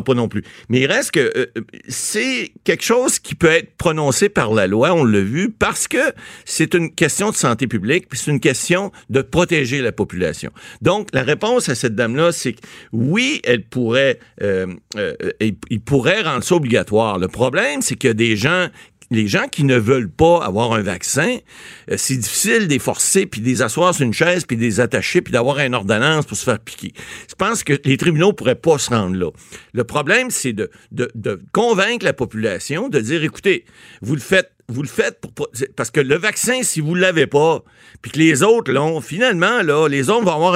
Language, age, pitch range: French, 50-69, 120-185 Hz